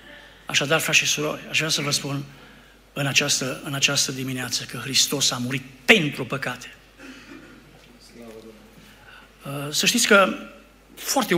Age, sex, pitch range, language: 60-79, male, 140-180 Hz, Romanian